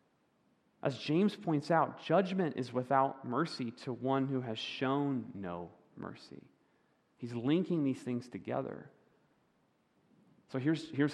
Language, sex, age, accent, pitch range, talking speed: English, male, 30-49, American, 120-155 Hz, 125 wpm